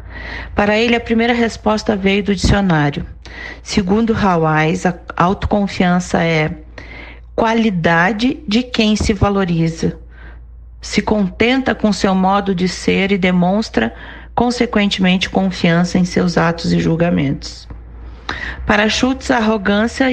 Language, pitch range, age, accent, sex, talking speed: Portuguese, 170-215 Hz, 40-59, Brazilian, female, 115 wpm